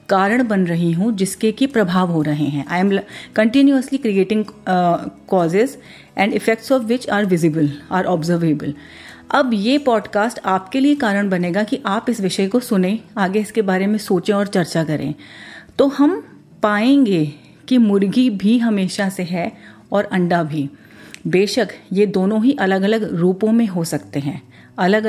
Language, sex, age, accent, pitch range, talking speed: Hindi, female, 40-59, native, 180-235 Hz, 165 wpm